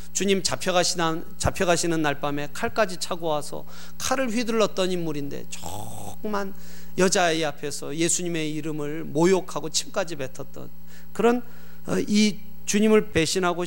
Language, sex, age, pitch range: Korean, male, 30-49, 125-185 Hz